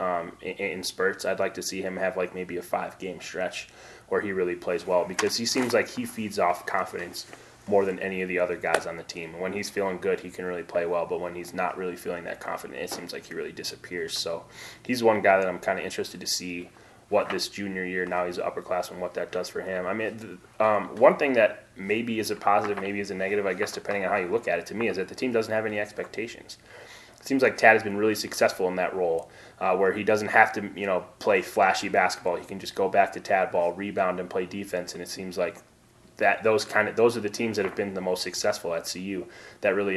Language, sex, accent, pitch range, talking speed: English, male, American, 90-105 Hz, 260 wpm